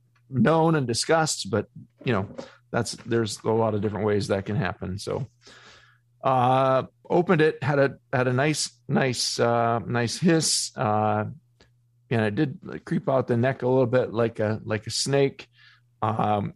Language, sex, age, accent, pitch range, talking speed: English, male, 40-59, American, 110-130 Hz, 165 wpm